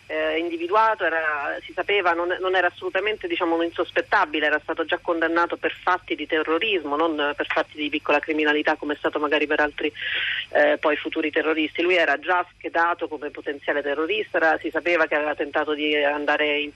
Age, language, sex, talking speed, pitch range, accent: 40-59, Italian, female, 180 wpm, 155-180 Hz, native